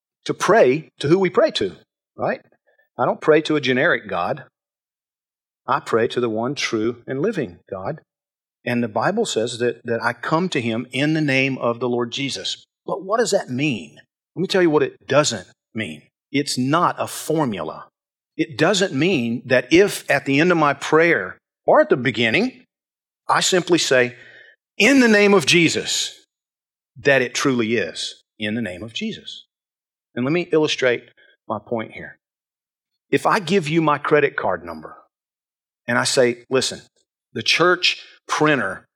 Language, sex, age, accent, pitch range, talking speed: English, male, 40-59, American, 125-175 Hz, 175 wpm